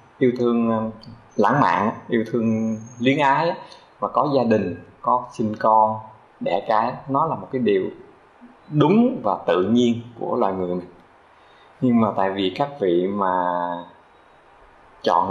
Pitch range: 95-125 Hz